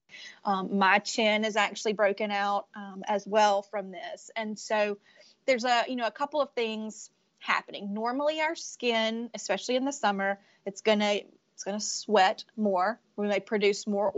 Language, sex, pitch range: English, female, 200-225 Hz